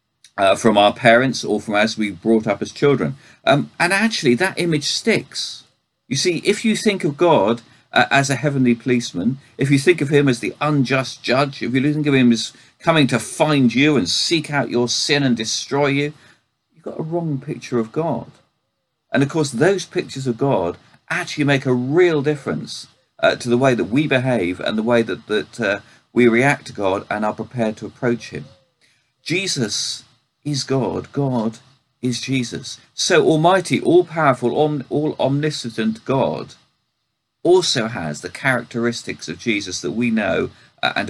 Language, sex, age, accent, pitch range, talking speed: English, male, 40-59, British, 115-150 Hz, 180 wpm